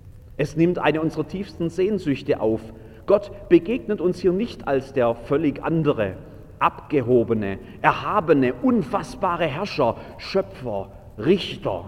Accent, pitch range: German, 105-135 Hz